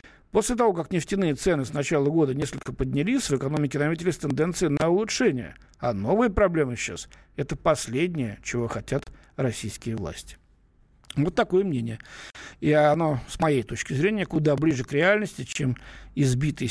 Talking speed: 145 wpm